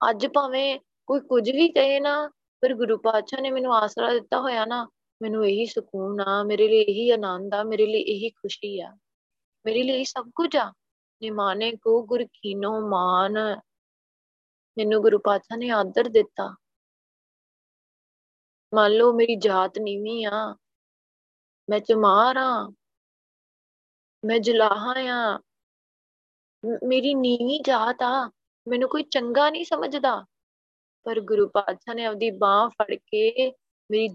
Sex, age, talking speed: female, 20-39, 130 wpm